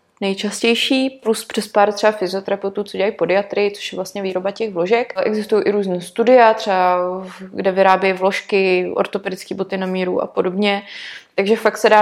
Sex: female